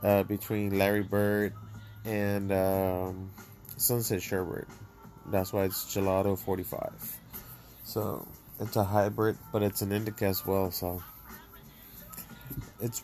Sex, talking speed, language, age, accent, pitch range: male, 115 wpm, English, 20-39, American, 95-110 Hz